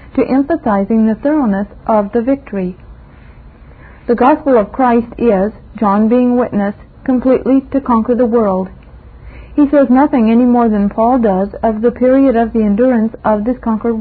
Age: 40-59